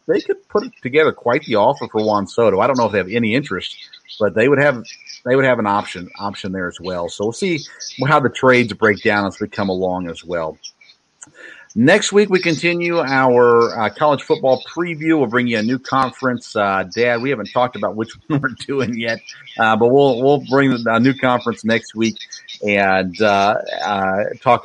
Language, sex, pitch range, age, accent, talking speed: English, male, 100-135 Hz, 40-59, American, 205 wpm